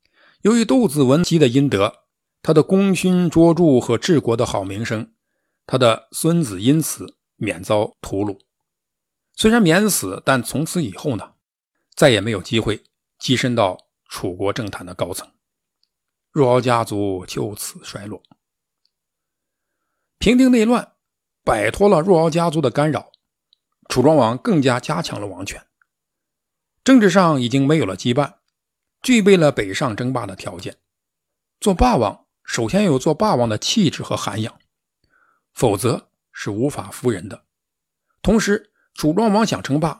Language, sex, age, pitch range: Chinese, male, 50-69, 115-190 Hz